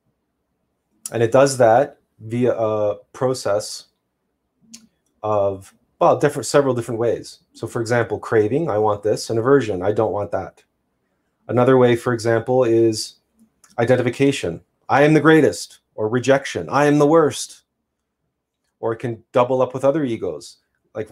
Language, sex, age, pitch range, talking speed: English, male, 30-49, 110-135 Hz, 145 wpm